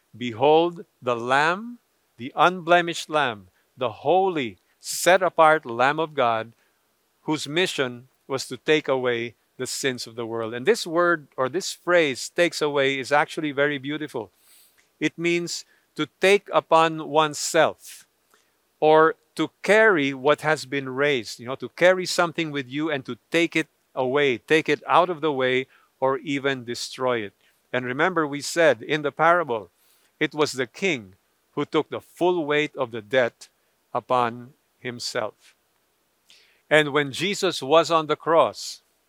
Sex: male